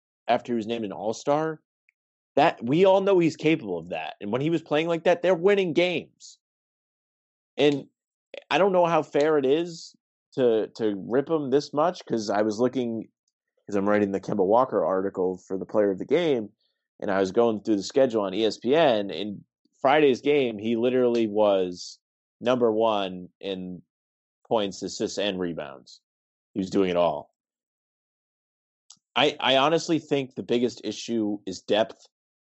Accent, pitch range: American, 95-125 Hz